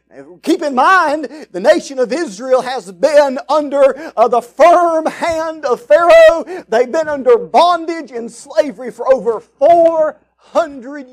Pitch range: 270-350 Hz